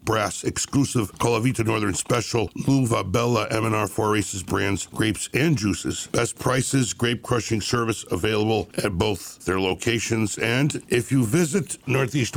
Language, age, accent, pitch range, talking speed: English, 60-79, American, 100-125 Hz, 135 wpm